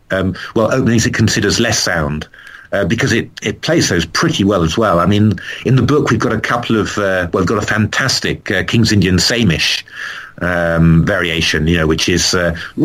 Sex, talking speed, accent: male, 205 wpm, British